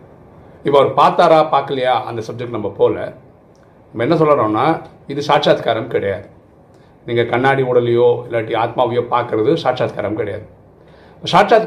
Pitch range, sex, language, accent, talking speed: 115-165 Hz, male, Tamil, native, 120 wpm